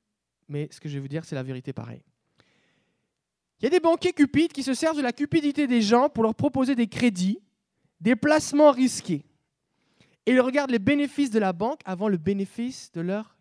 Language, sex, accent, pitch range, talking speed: French, male, French, 185-280 Hz, 205 wpm